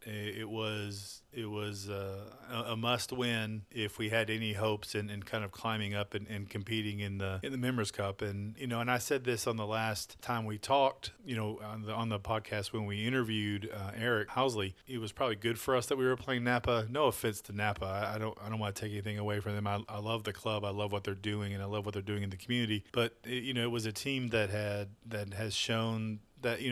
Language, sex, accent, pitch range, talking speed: English, male, American, 105-120 Hz, 255 wpm